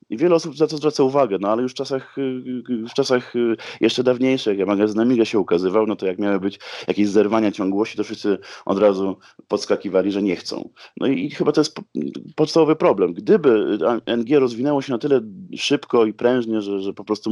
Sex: male